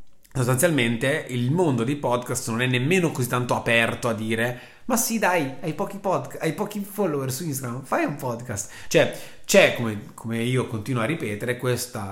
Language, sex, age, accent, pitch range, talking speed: Italian, male, 30-49, native, 115-140 Hz, 180 wpm